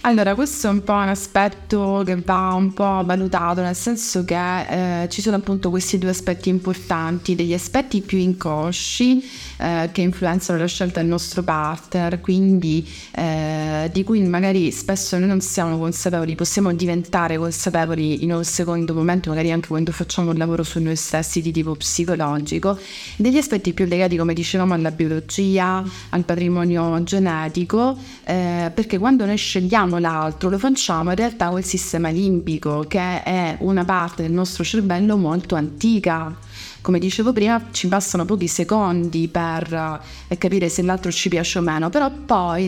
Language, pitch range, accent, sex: Italian, 170-195 Hz, native, female